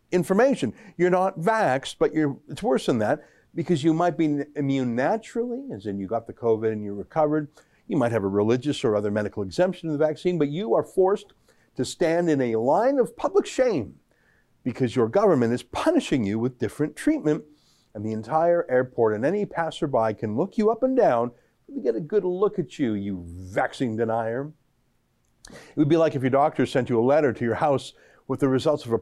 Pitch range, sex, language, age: 115-190 Hz, male, English, 50-69